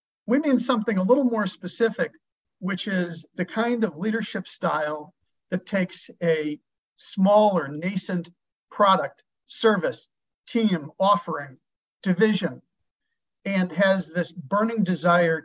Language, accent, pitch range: English, American, 170-210 Hz